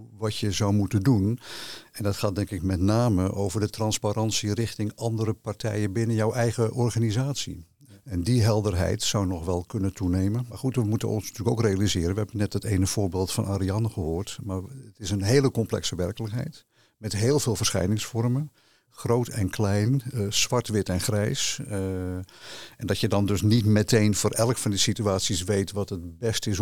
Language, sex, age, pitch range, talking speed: Dutch, male, 50-69, 100-120 Hz, 190 wpm